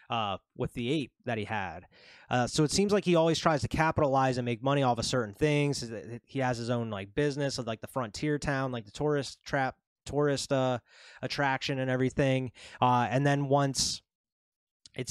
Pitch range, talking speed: 120-150 Hz, 195 wpm